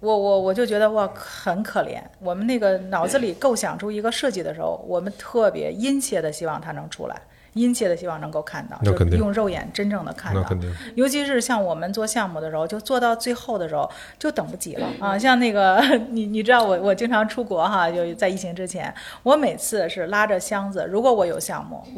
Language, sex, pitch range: Chinese, female, 170-225 Hz